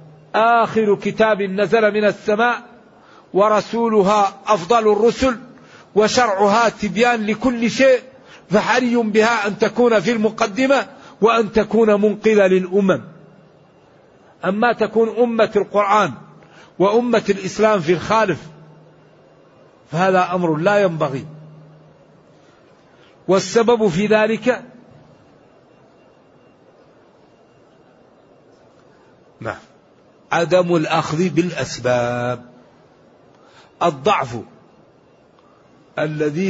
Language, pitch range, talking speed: Arabic, 165-215 Hz, 70 wpm